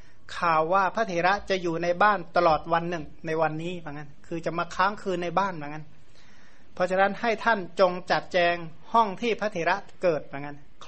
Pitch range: 155-190 Hz